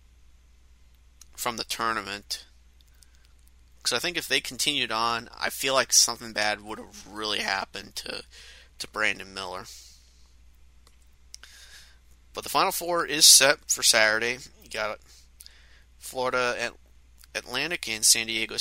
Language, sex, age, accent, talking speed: English, male, 30-49, American, 130 wpm